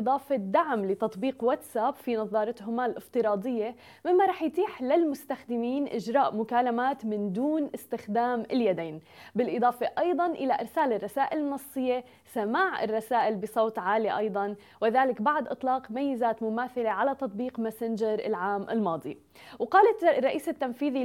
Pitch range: 225-275 Hz